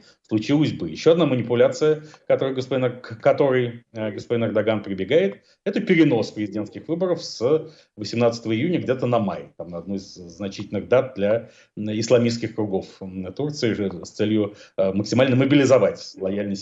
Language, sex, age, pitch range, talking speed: Russian, male, 40-59, 100-135 Hz, 135 wpm